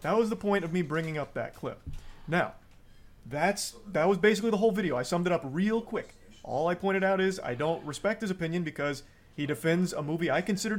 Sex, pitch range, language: male, 135-190 Hz, English